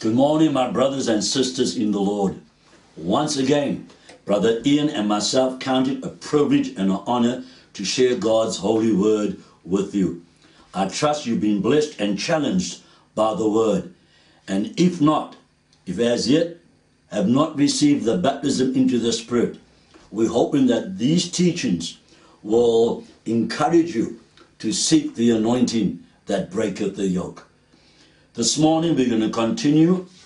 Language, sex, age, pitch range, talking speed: English, male, 60-79, 110-160 Hz, 150 wpm